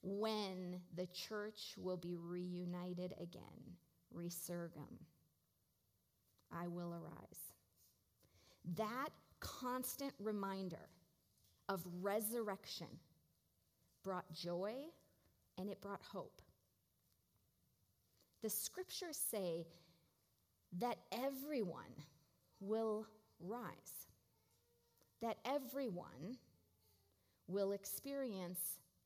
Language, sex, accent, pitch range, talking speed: English, female, American, 140-215 Hz, 70 wpm